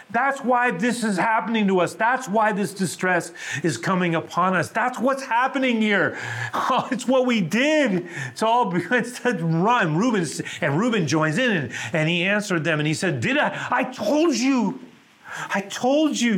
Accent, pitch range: American, 125-210 Hz